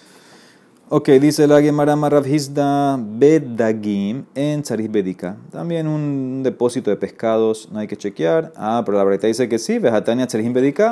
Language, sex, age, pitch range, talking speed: Spanish, male, 30-49, 105-135 Hz, 145 wpm